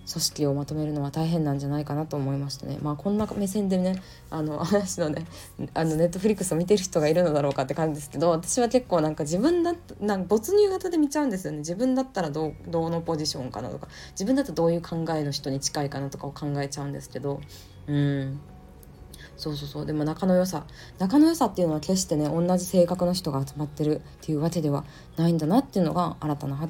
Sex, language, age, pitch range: female, Japanese, 20-39, 145-180 Hz